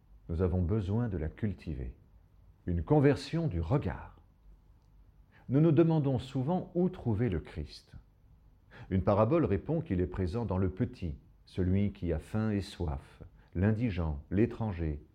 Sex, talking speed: male, 140 wpm